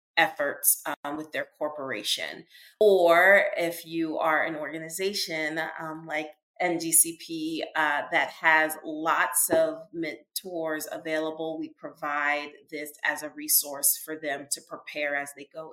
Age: 30-49